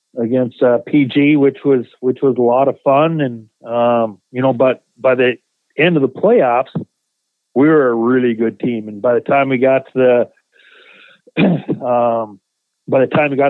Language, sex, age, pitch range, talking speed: English, male, 40-59, 125-145 Hz, 185 wpm